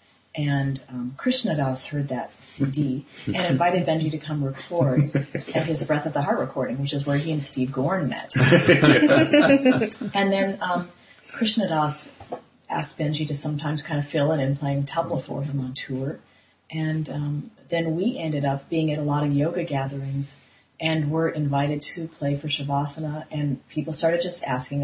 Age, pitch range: 30-49, 140-165 Hz